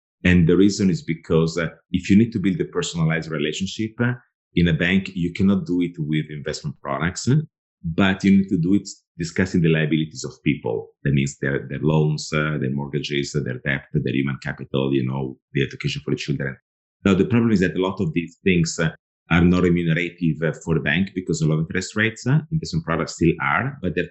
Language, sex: English, male